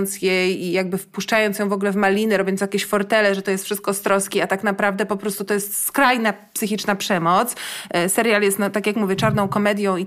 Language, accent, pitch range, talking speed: Polish, native, 200-250 Hz, 210 wpm